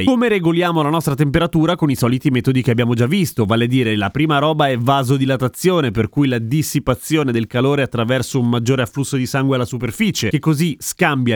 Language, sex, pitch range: Italian, male, 120-155 Hz